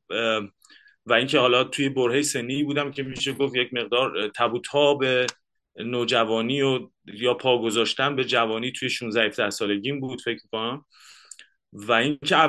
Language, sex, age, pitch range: Persian, male, 30-49, 115-140 Hz